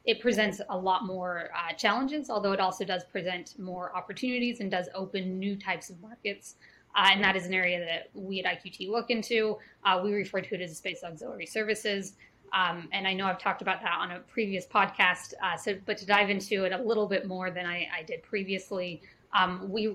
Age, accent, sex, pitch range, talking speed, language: 20-39, American, female, 180-210 Hz, 215 wpm, English